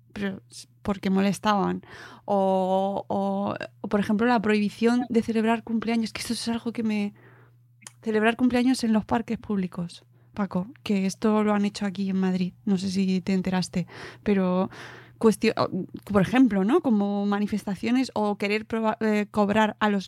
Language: Spanish